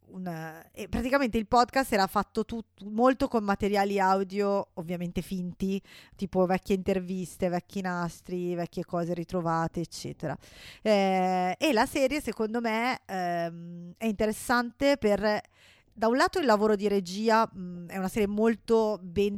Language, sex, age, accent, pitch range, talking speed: Italian, female, 20-39, native, 185-220 Hz, 130 wpm